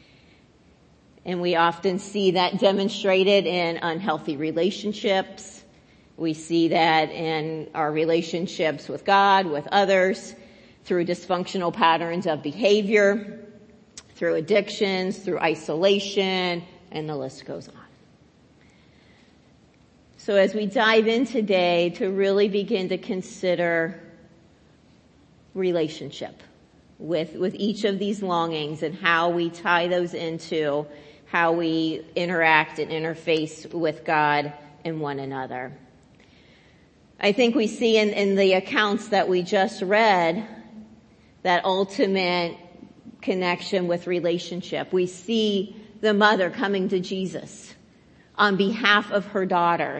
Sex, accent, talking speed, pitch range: female, American, 115 wpm, 165-200 Hz